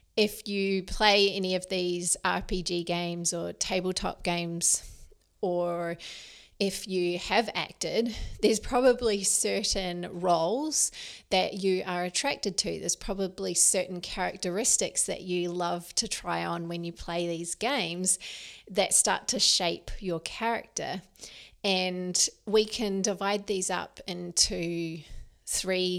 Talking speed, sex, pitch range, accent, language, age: 125 wpm, female, 175-200 Hz, Australian, English, 30-49